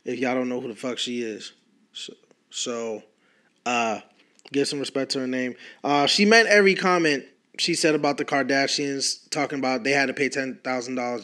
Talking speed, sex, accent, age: 185 wpm, male, American, 20-39